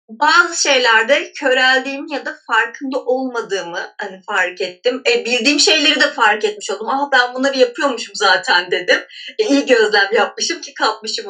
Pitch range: 225-310 Hz